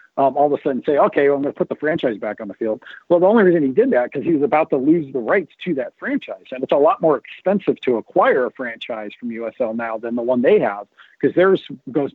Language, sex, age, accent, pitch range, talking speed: English, male, 40-59, American, 125-155 Hz, 275 wpm